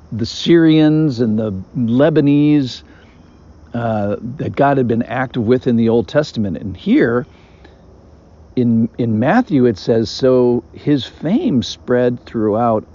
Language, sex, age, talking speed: English, male, 50-69, 130 wpm